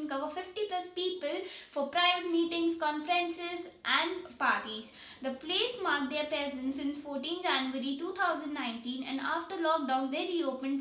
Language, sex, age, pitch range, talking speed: English, female, 20-39, 265-340 Hz, 135 wpm